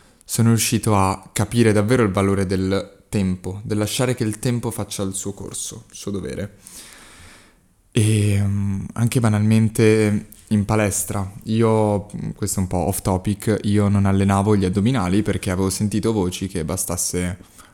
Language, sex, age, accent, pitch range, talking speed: Italian, male, 20-39, native, 95-110 Hz, 150 wpm